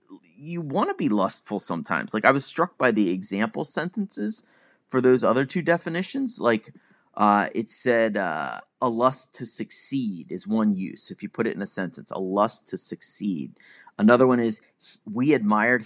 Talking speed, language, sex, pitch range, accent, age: 180 wpm, English, male, 105-160 Hz, American, 30-49